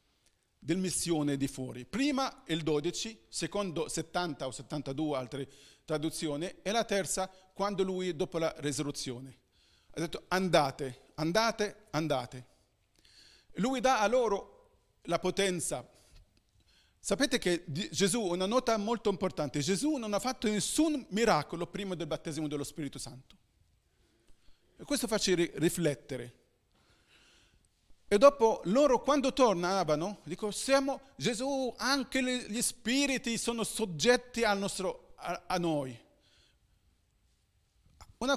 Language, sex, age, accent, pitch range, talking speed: Italian, male, 40-59, native, 150-215 Hz, 115 wpm